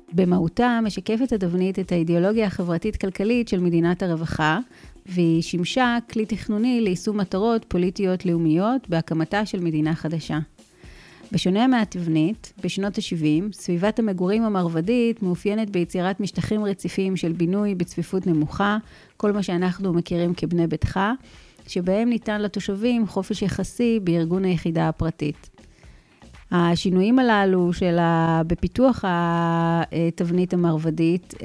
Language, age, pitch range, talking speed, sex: Hebrew, 30-49, 170-205 Hz, 105 wpm, female